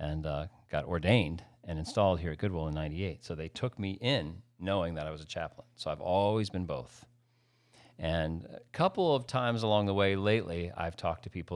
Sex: male